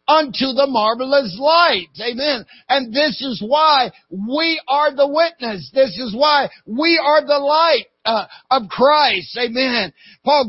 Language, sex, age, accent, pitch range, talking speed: English, male, 60-79, American, 215-290 Hz, 145 wpm